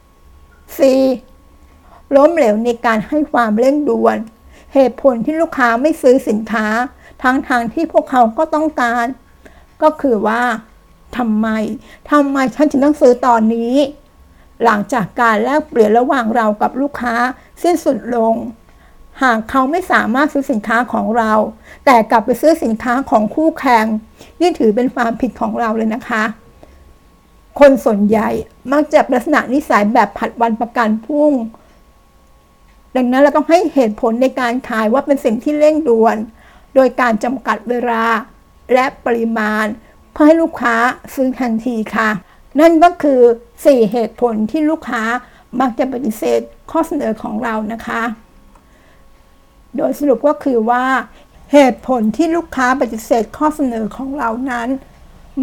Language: Thai